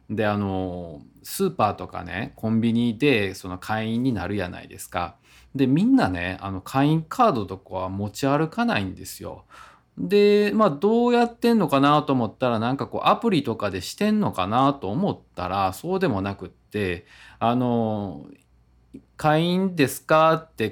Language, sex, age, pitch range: Japanese, male, 20-39, 95-135 Hz